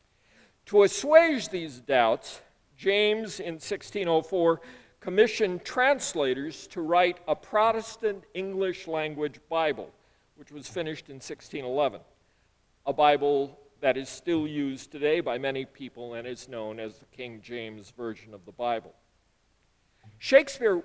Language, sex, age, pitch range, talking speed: English, male, 50-69, 130-195 Hz, 120 wpm